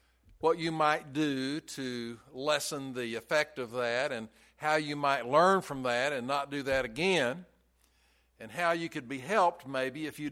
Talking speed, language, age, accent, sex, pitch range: 180 wpm, English, 60-79, American, male, 115-165 Hz